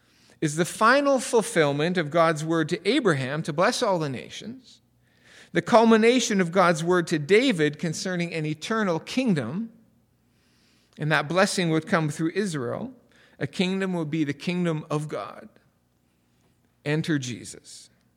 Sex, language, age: male, English, 40-59